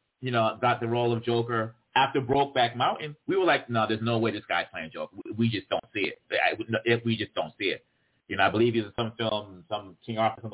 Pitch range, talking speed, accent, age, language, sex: 110-130 Hz, 250 wpm, American, 30-49, English, male